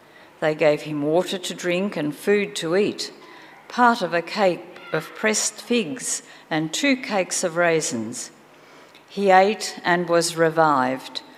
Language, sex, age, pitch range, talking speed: English, female, 50-69, 160-200 Hz, 140 wpm